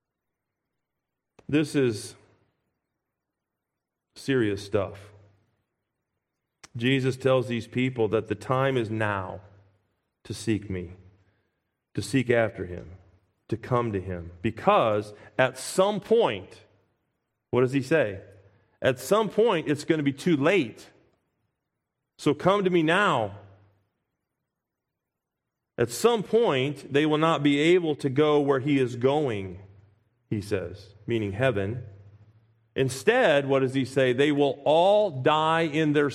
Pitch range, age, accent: 105-140 Hz, 40-59, American